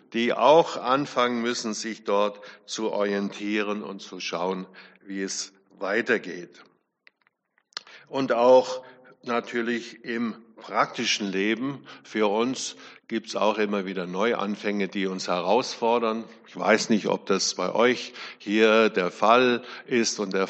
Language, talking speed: German, 130 wpm